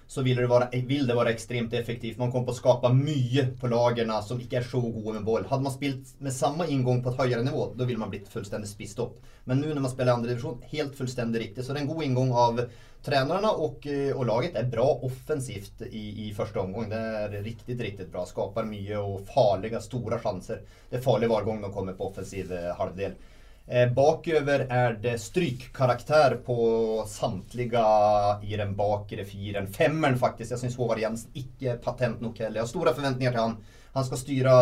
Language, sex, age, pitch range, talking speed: English, male, 30-49, 105-125 Hz, 200 wpm